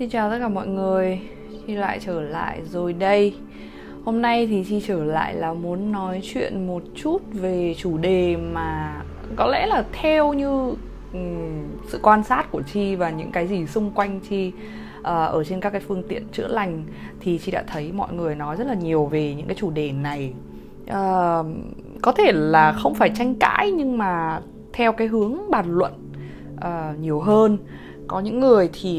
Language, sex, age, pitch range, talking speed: Vietnamese, female, 20-39, 155-205 Hz, 195 wpm